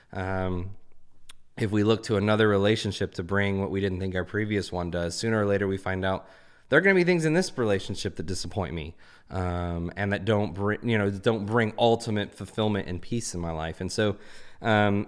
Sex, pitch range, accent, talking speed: male, 95-130 Hz, American, 215 wpm